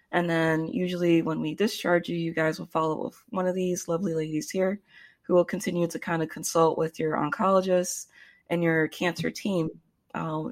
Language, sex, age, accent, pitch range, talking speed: English, female, 20-39, American, 160-190 Hz, 190 wpm